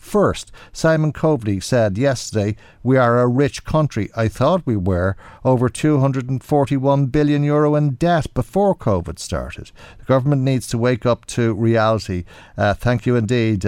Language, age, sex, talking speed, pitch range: English, 50-69, male, 155 wpm, 95-130 Hz